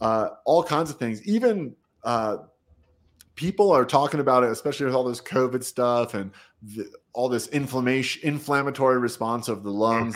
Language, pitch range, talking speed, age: English, 105-135 Hz, 165 wpm, 30-49